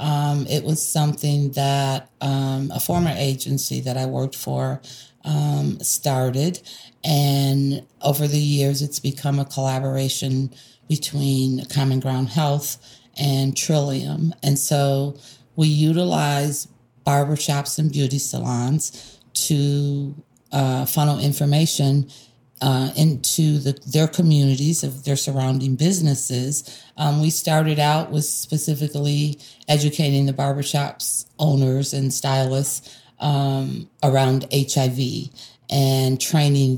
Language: English